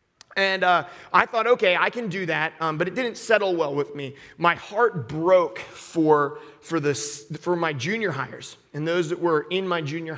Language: English